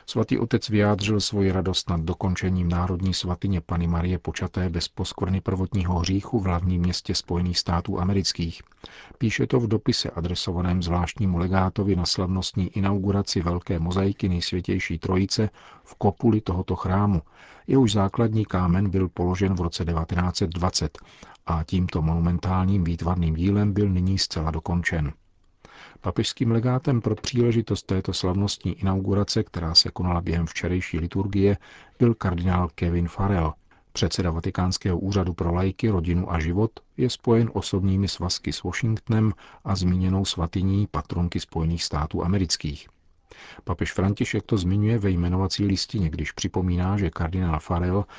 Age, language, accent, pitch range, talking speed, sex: 50-69, Czech, native, 85-100 Hz, 135 wpm, male